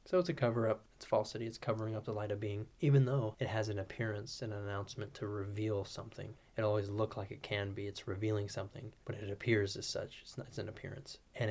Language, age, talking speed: English, 20-39, 240 wpm